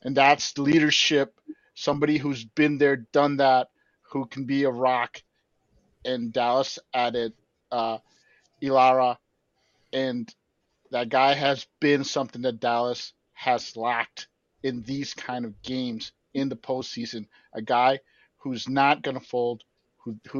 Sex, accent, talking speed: male, American, 135 wpm